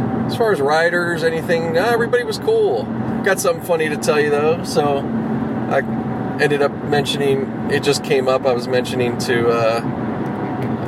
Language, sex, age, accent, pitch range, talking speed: English, male, 30-49, American, 115-160 Hz, 160 wpm